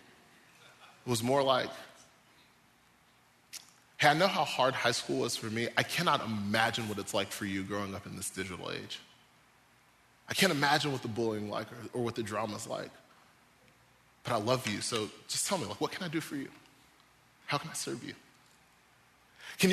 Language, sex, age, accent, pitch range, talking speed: English, male, 20-39, American, 120-200 Hz, 195 wpm